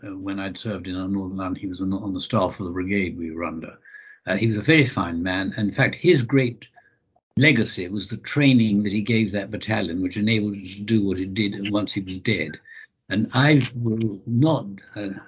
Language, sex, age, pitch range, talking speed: English, male, 60-79, 100-120 Hz, 225 wpm